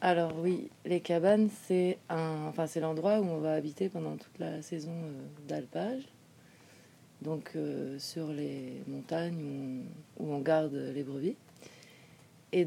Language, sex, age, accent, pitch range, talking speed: French, female, 30-49, French, 145-170 Hz, 150 wpm